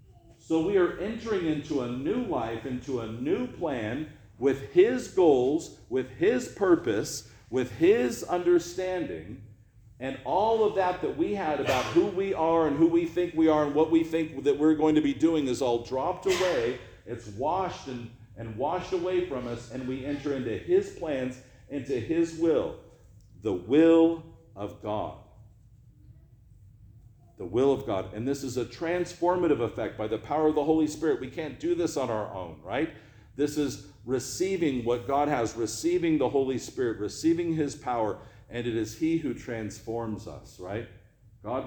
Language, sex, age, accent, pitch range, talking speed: English, male, 50-69, American, 110-160 Hz, 175 wpm